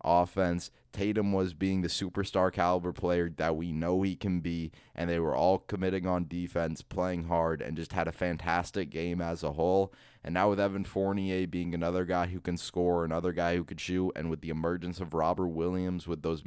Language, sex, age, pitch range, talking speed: English, male, 20-39, 85-105 Hz, 210 wpm